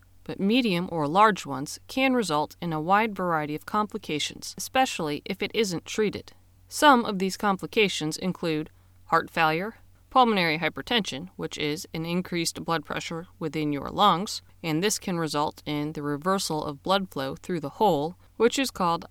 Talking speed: 165 wpm